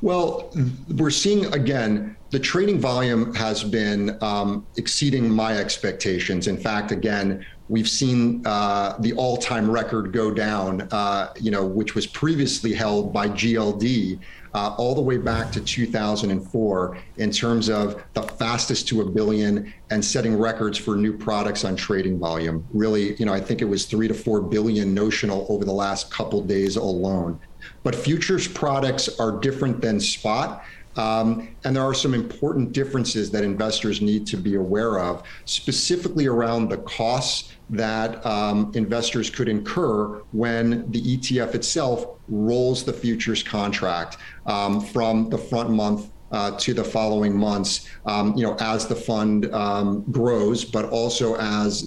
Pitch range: 105-120 Hz